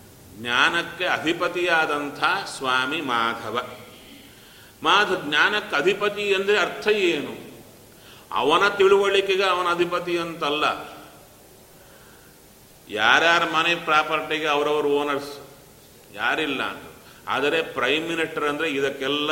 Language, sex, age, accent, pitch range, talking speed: Kannada, male, 40-59, native, 140-175 Hz, 80 wpm